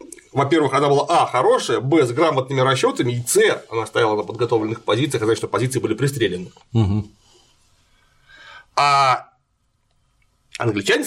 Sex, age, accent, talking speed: male, 30-49, native, 140 wpm